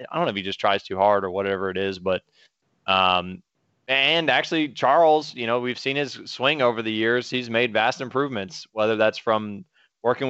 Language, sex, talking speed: English, male, 205 wpm